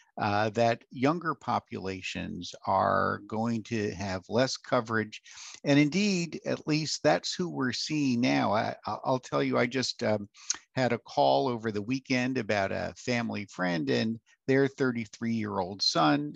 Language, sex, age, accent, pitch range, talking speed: English, male, 50-69, American, 110-140 Hz, 145 wpm